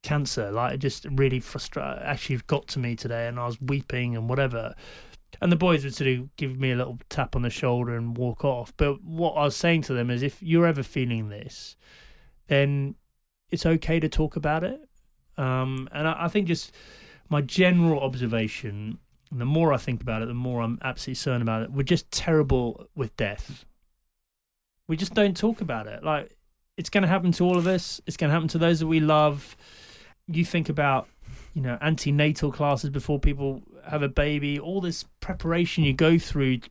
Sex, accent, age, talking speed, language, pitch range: male, British, 30-49, 200 wpm, English, 120-155 Hz